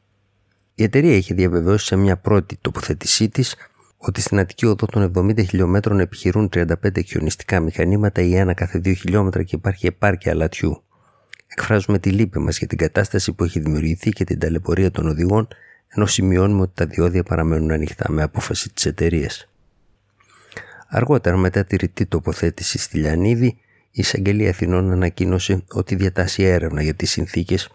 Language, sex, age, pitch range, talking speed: Greek, male, 50-69, 85-100 Hz, 155 wpm